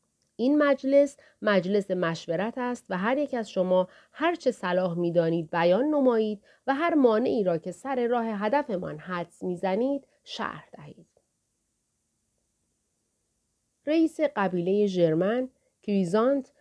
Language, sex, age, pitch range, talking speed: Persian, female, 40-59, 185-255 Hz, 125 wpm